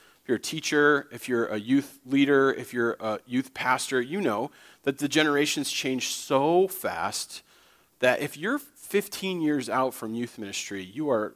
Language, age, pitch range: English, 40-59, 115-150 Hz